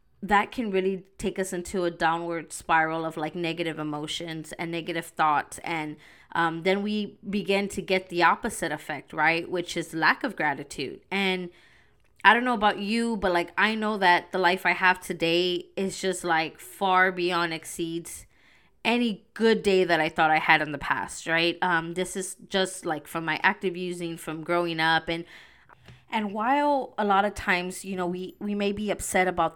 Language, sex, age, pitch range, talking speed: English, female, 20-39, 165-195 Hz, 190 wpm